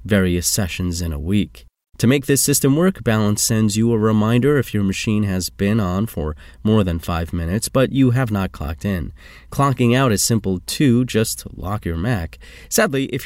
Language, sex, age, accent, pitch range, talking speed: English, male, 30-49, American, 90-120 Hz, 195 wpm